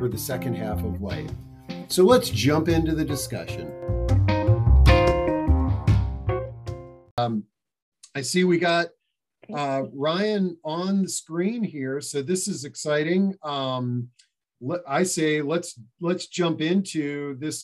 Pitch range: 130-160 Hz